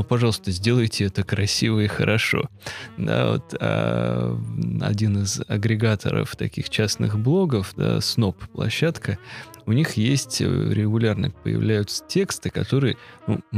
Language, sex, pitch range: Russian, male, 105-130 Hz